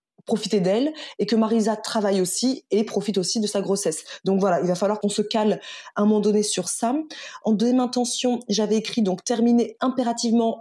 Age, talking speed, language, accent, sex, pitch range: 20-39, 200 wpm, French, French, female, 200-235 Hz